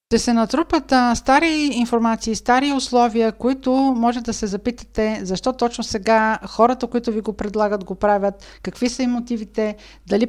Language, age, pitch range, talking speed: Bulgarian, 50-69, 205-240 Hz, 165 wpm